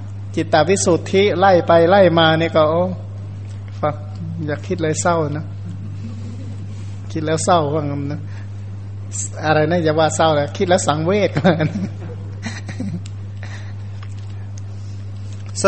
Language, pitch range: Thai, 100-165 Hz